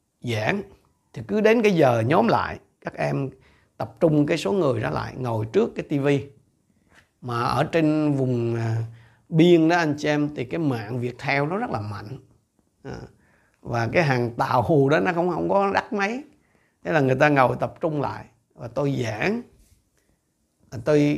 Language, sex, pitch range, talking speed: Vietnamese, male, 120-165 Hz, 180 wpm